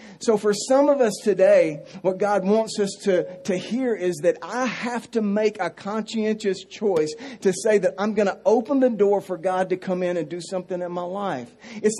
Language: English